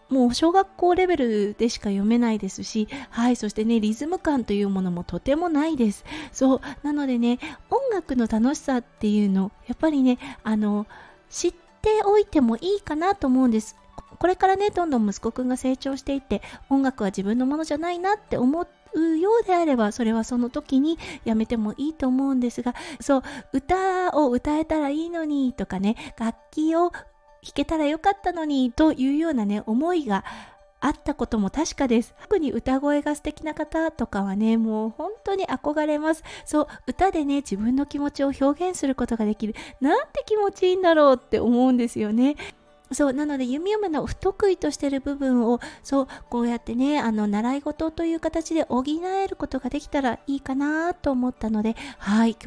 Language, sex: Japanese, female